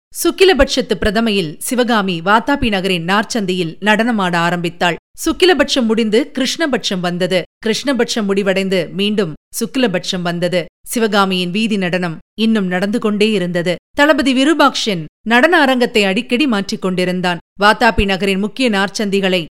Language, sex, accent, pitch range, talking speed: Tamil, female, native, 185-250 Hz, 110 wpm